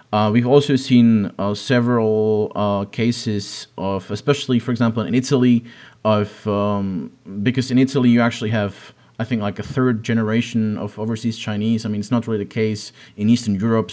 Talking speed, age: 175 wpm, 30-49